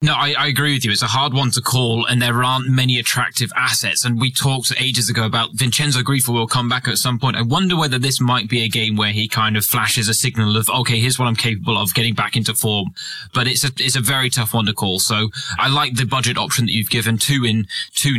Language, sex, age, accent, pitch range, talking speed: English, male, 20-39, British, 110-135 Hz, 265 wpm